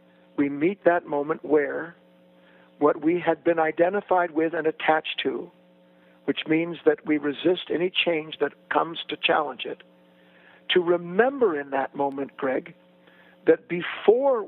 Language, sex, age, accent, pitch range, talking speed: English, male, 60-79, American, 135-200 Hz, 140 wpm